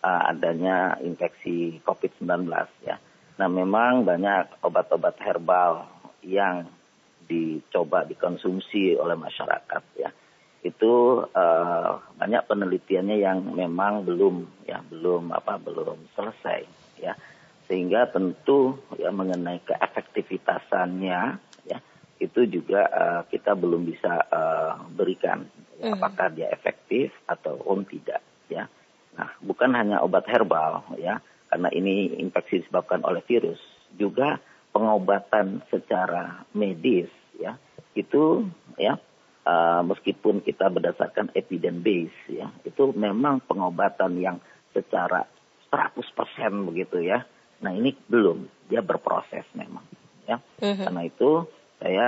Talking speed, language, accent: 105 wpm, Indonesian, native